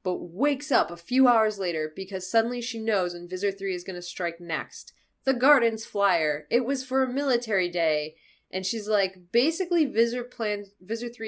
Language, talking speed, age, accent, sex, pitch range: English, 175 wpm, 20-39, American, female, 175-240 Hz